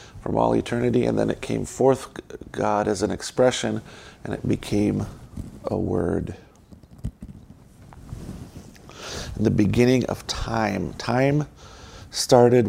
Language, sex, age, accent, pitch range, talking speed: English, male, 50-69, American, 100-115 Hz, 110 wpm